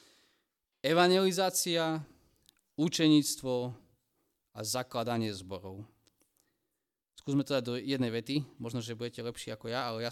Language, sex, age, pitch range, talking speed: Slovak, male, 30-49, 115-155 Hz, 115 wpm